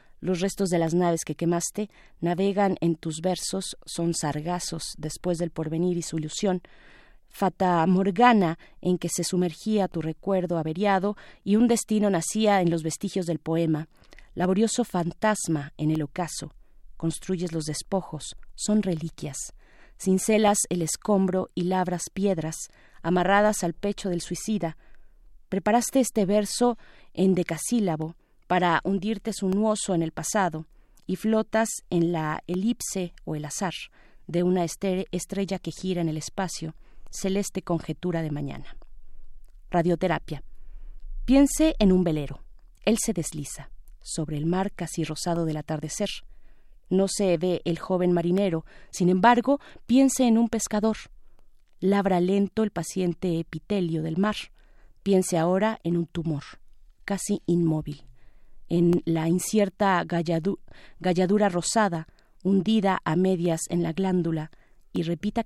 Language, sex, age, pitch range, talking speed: Spanish, female, 30-49, 165-200 Hz, 130 wpm